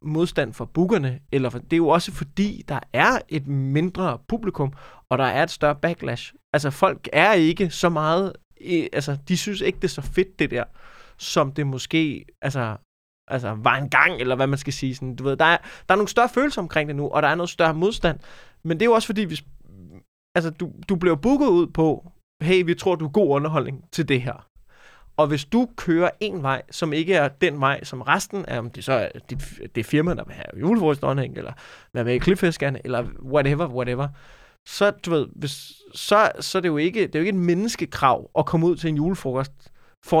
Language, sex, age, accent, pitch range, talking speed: Danish, male, 20-39, native, 140-180 Hz, 220 wpm